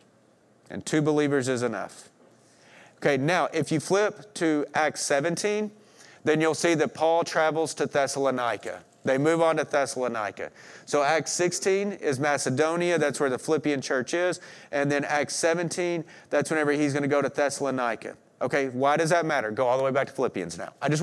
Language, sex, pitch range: English, male, 135-170 Hz